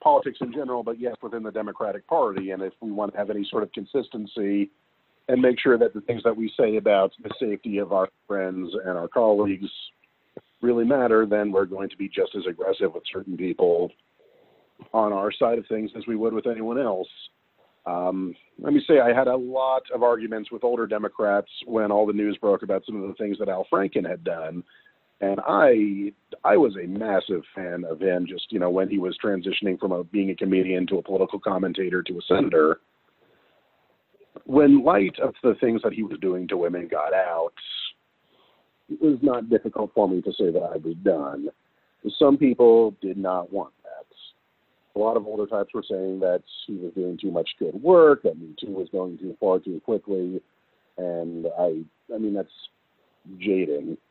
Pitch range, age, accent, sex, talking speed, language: 95-120 Hz, 50-69, American, male, 195 wpm, English